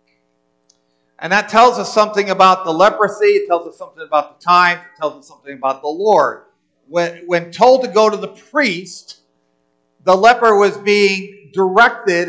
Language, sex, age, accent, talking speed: English, male, 50-69, American, 170 wpm